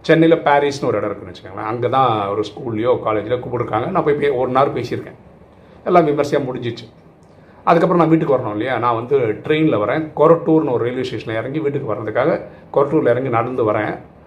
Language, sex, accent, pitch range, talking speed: Tamil, male, native, 115-150 Hz, 170 wpm